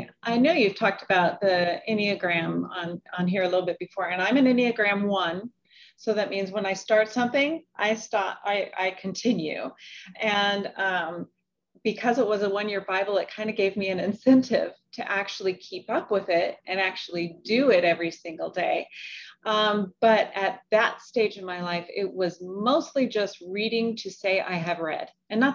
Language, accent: English, American